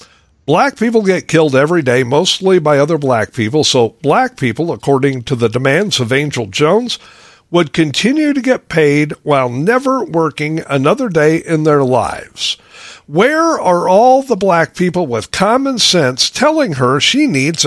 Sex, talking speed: male, 160 wpm